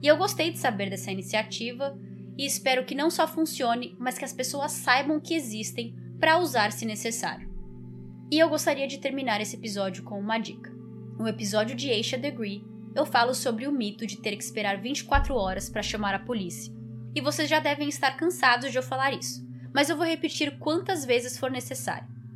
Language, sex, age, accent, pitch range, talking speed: Portuguese, female, 20-39, Brazilian, 200-265 Hz, 195 wpm